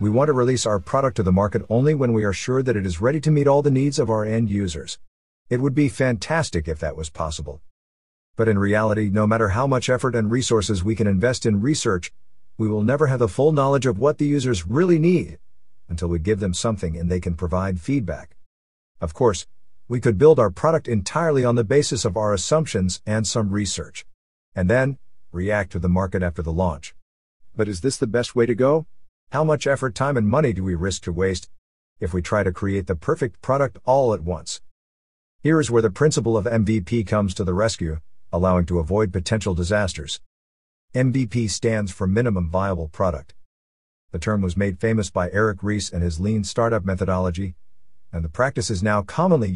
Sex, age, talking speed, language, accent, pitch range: male, 50-69, 205 wpm, English, American, 90-125 Hz